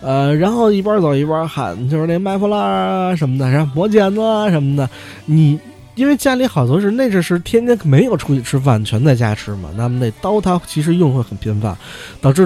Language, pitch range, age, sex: Chinese, 120-170 Hz, 20-39, male